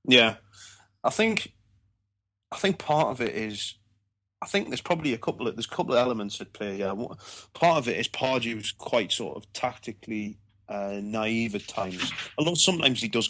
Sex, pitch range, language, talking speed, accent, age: male, 100-120 Hz, English, 190 wpm, British, 30-49